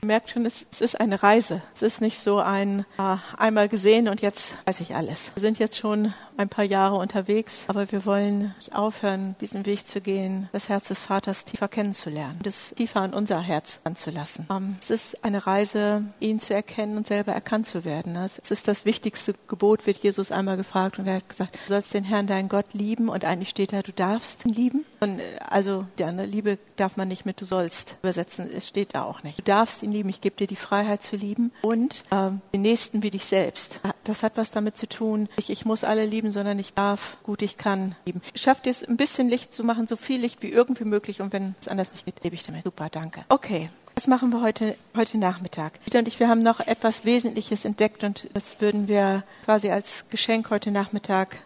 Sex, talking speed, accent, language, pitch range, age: female, 225 wpm, German, German, 195-225 Hz, 50-69